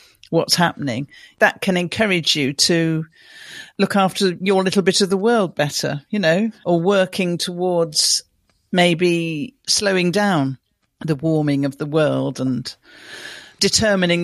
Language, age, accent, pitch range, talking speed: English, 50-69, British, 150-185 Hz, 130 wpm